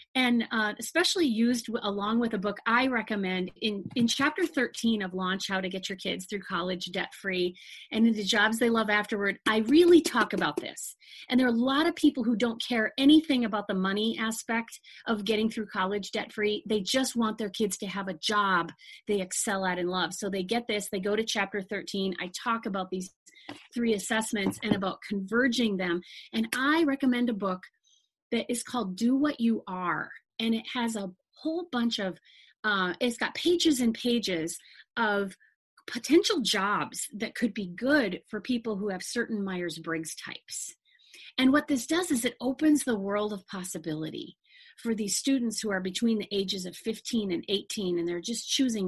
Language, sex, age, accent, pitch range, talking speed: English, female, 30-49, American, 195-250 Hz, 190 wpm